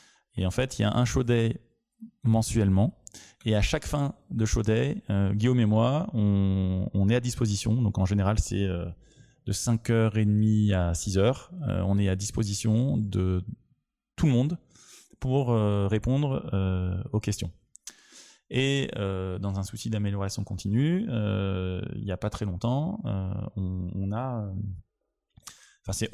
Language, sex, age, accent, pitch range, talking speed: French, male, 20-39, French, 95-120 Hz, 135 wpm